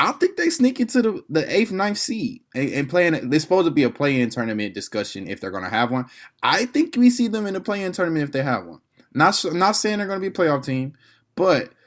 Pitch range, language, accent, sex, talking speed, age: 110-170 Hz, English, American, male, 270 wpm, 20-39